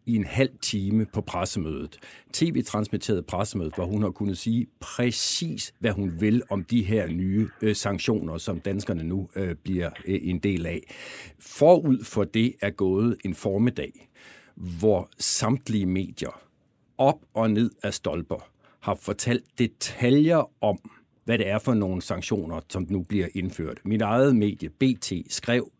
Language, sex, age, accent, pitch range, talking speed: Danish, male, 60-79, native, 100-130 Hz, 155 wpm